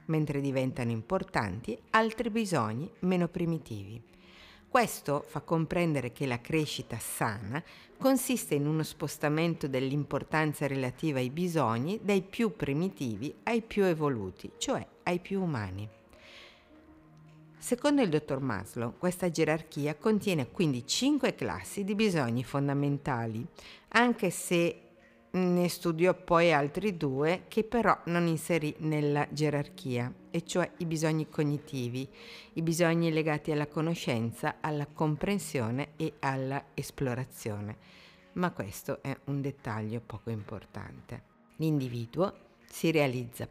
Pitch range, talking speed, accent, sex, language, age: 125-170 Hz, 115 wpm, native, female, Italian, 50-69